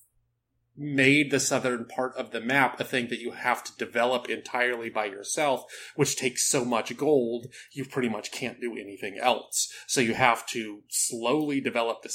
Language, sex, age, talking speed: English, male, 30-49, 180 wpm